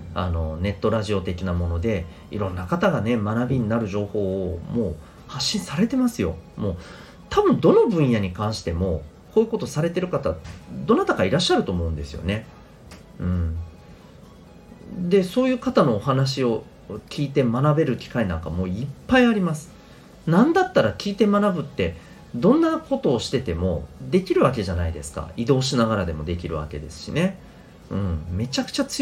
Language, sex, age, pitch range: Japanese, male, 40-59, 85-140 Hz